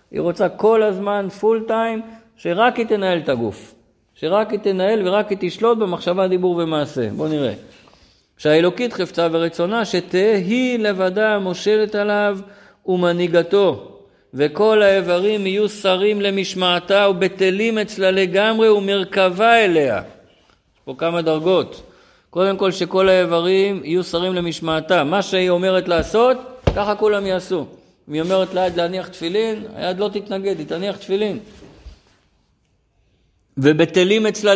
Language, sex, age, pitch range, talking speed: Hebrew, male, 50-69, 155-210 Hz, 125 wpm